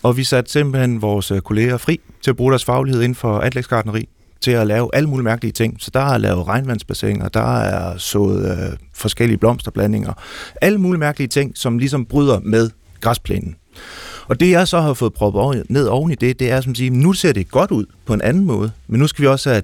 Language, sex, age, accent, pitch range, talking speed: Danish, male, 30-49, native, 100-135 Hz, 215 wpm